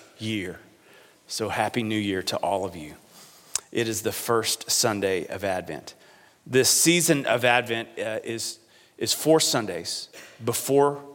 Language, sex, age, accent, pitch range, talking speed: English, male, 40-59, American, 110-140 Hz, 140 wpm